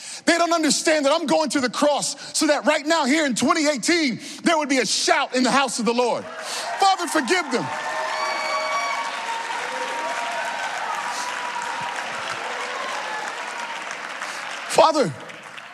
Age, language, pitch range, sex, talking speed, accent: 30-49, English, 275-335 Hz, male, 120 wpm, American